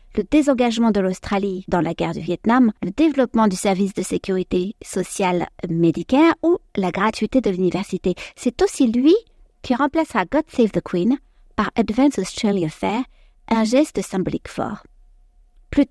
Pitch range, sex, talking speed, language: 185-270 Hz, female, 150 wpm, French